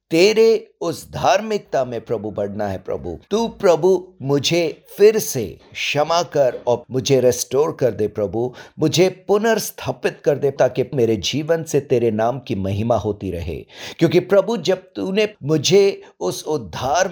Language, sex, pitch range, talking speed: English, male, 115-165 Hz, 145 wpm